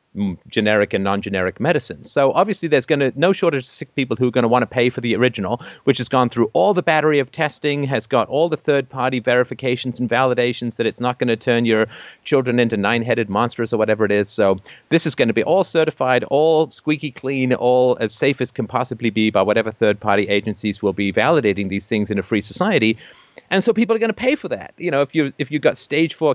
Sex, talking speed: male, 245 wpm